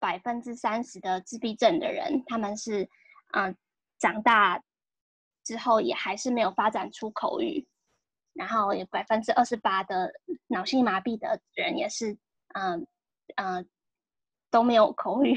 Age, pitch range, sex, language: 10-29, 220-280 Hz, female, Chinese